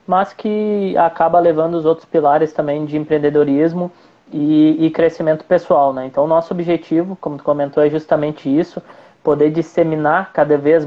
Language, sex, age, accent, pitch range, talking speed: Portuguese, male, 20-39, Brazilian, 145-170 Hz, 160 wpm